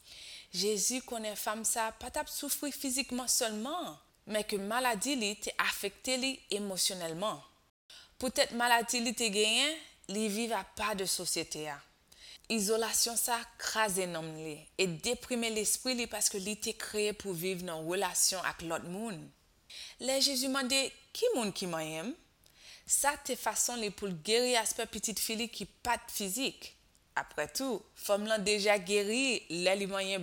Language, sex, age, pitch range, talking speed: French, female, 20-39, 190-250 Hz, 135 wpm